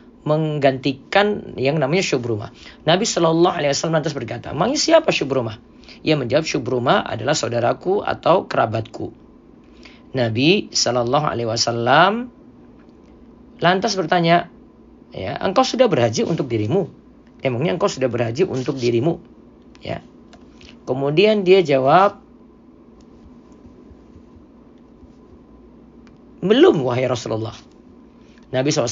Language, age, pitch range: Indonesian, 40-59, 120-165 Hz